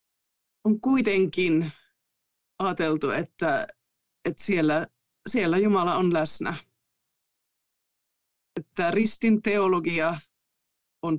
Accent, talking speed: native, 70 wpm